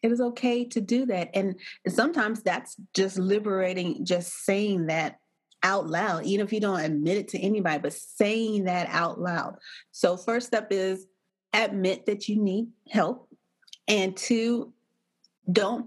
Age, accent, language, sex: 30-49, American, English, female